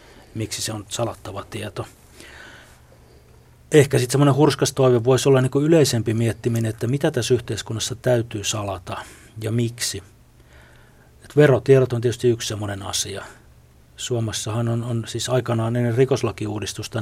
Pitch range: 100-120 Hz